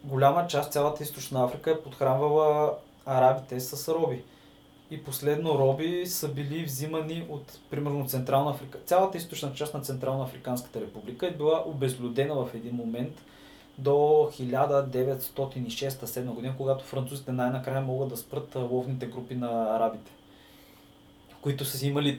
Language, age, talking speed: Bulgarian, 20-39, 135 wpm